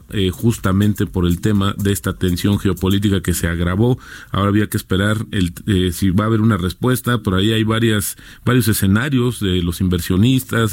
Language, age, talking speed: Spanish, 40-59, 175 wpm